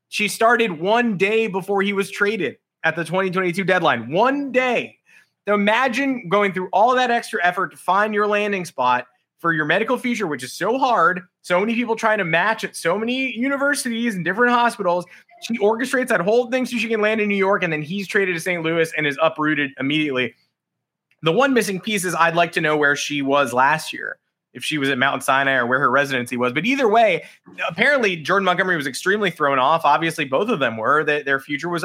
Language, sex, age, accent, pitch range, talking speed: English, male, 20-39, American, 155-225 Hz, 215 wpm